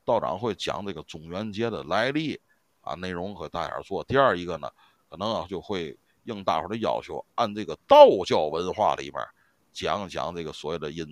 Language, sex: Chinese, male